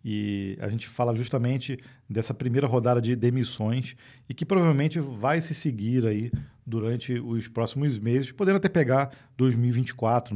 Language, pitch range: Portuguese, 120-145 Hz